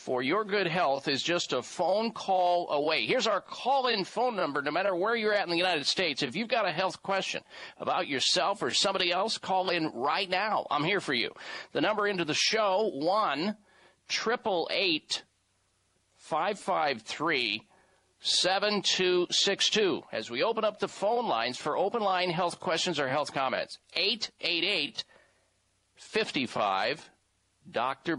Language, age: English, 50-69